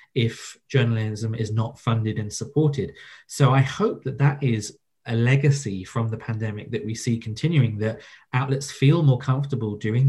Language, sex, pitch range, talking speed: English, male, 115-135 Hz, 165 wpm